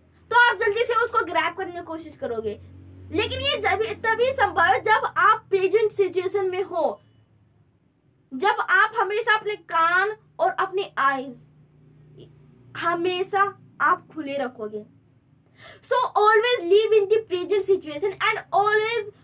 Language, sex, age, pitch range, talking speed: Hindi, female, 20-39, 265-435 Hz, 85 wpm